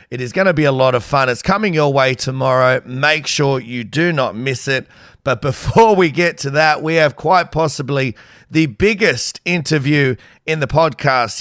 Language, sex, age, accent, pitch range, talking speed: English, male, 30-49, Australian, 130-165 Hz, 195 wpm